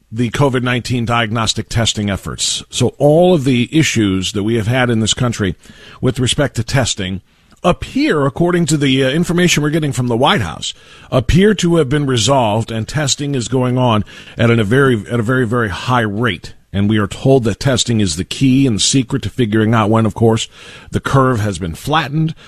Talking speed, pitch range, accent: 205 wpm, 105-135 Hz, American